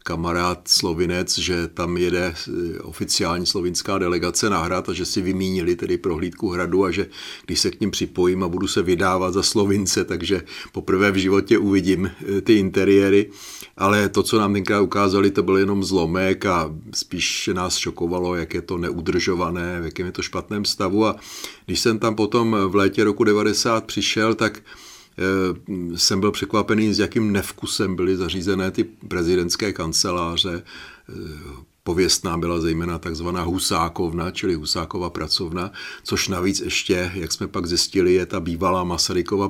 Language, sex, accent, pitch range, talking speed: Czech, male, native, 85-100 Hz, 155 wpm